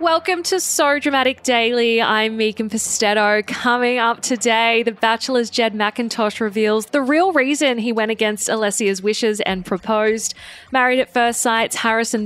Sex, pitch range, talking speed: female, 210-280 Hz, 150 wpm